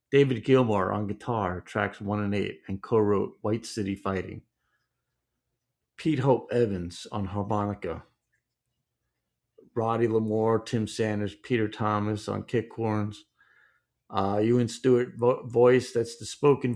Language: English